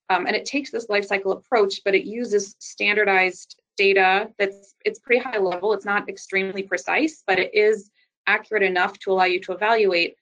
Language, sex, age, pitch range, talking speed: English, female, 20-39, 185-205 Hz, 190 wpm